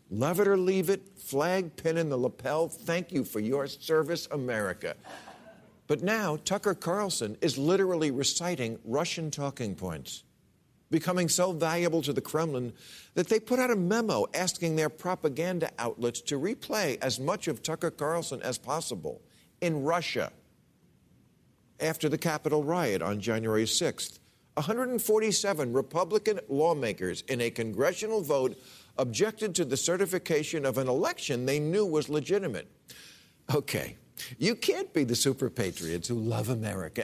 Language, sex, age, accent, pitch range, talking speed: English, male, 50-69, American, 130-180 Hz, 145 wpm